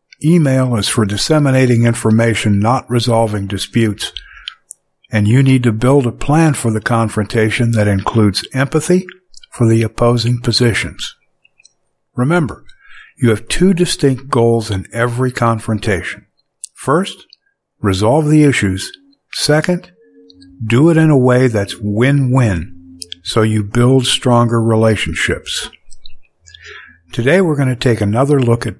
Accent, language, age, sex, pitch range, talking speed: American, English, 60-79, male, 105-135 Hz, 125 wpm